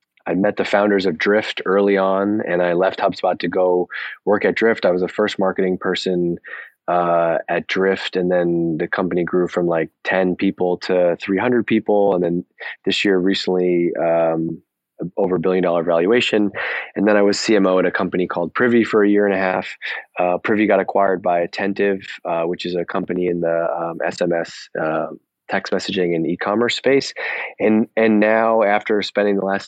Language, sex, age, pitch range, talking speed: English, male, 20-39, 90-100 Hz, 185 wpm